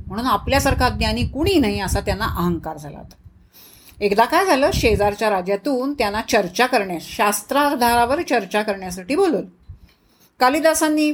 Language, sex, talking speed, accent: Marathi, female, 125 wpm, native